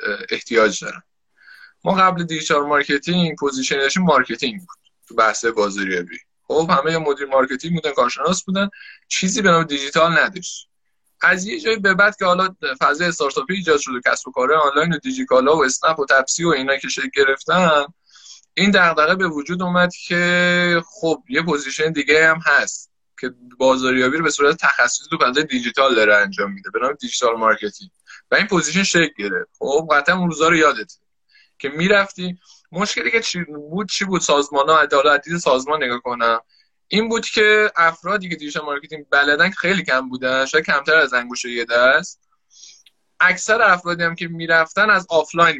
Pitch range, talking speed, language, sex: 145-210 Hz, 165 wpm, Persian, male